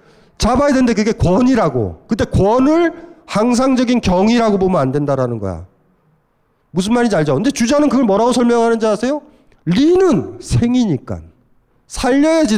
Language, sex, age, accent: Korean, male, 40-59, native